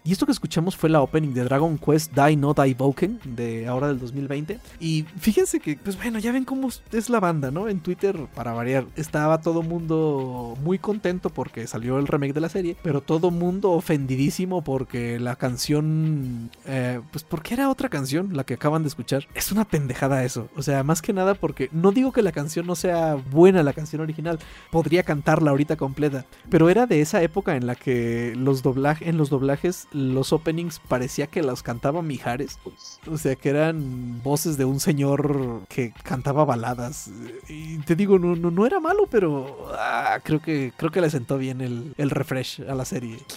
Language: Spanish